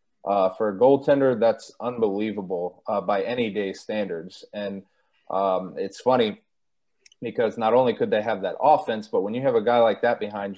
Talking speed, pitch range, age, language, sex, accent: 180 wpm, 100-125 Hz, 30-49, English, male, American